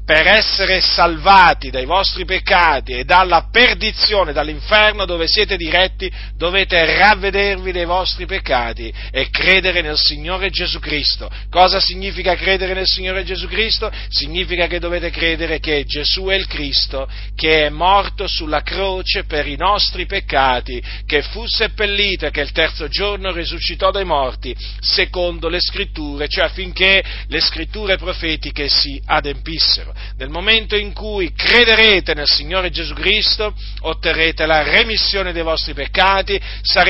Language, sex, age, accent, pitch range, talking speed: Italian, male, 40-59, native, 145-190 Hz, 140 wpm